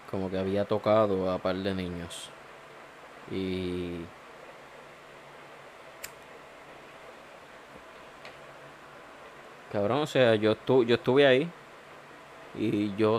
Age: 20-39